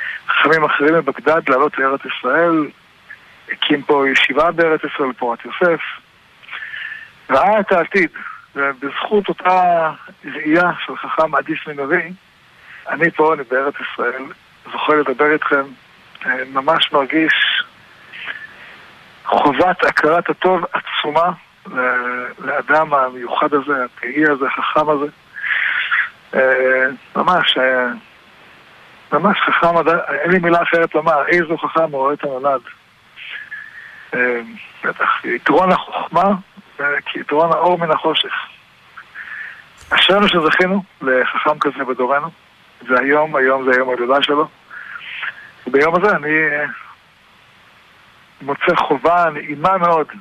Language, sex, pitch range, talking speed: Hebrew, male, 135-170 Hz, 100 wpm